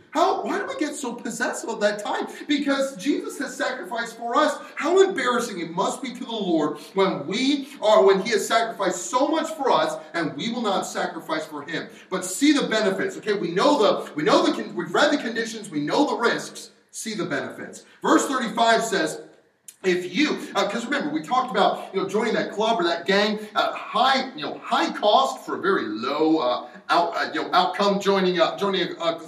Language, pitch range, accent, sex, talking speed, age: English, 195-290 Hz, American, male, 215 wpm, 40-59